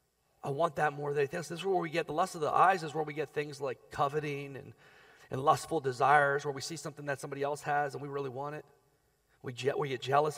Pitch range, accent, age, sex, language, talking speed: 145-210 Hz, American, 30-49, male, English, 255 wpm